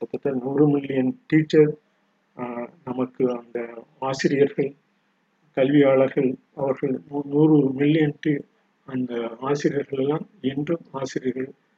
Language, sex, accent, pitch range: Tamil, male, native, 130-155 Hz